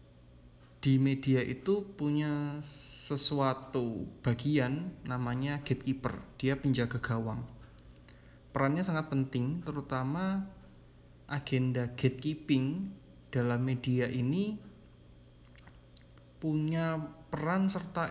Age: 20-39